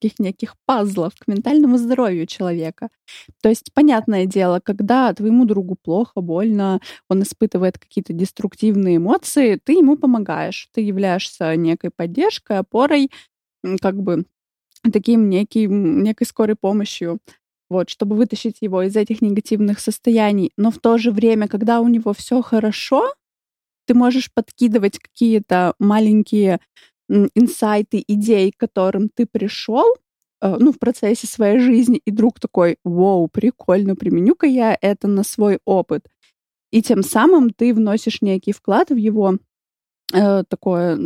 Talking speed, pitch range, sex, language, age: 130 wpm, 195-235 Hz, female, Russian, 20-39